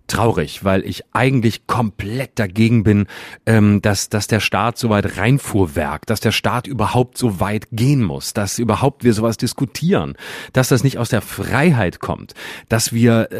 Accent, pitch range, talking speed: German, 105-130 Hz, 160 wpm